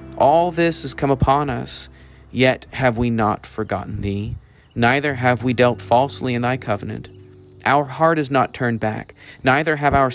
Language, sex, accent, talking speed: English, male, American, 170 wpm